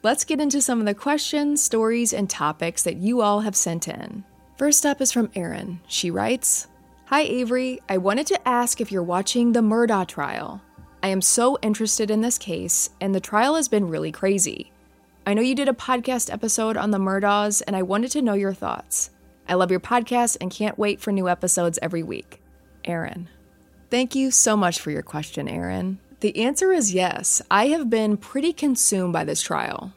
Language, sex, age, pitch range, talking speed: English, female, 20-39, 180-240 Hz, 200 wpm